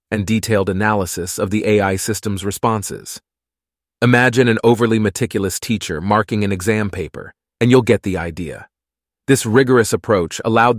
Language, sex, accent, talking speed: English, male, American, 145 wpm